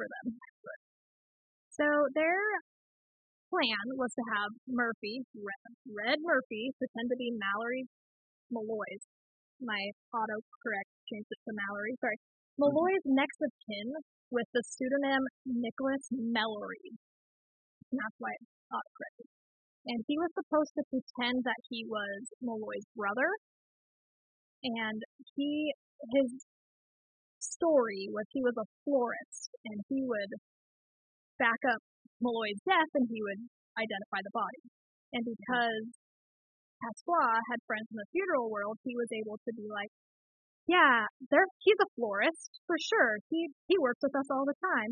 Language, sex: English, female